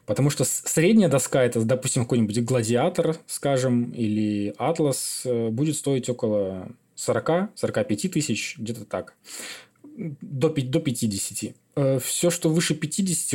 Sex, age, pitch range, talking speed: male, 20-39, 115-145 Hz, 110 wpm